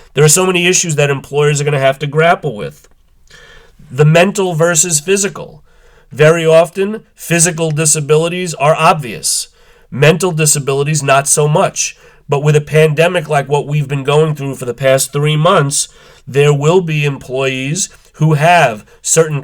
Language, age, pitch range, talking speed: English, 30-49, 140-160 Hz, 155 wpm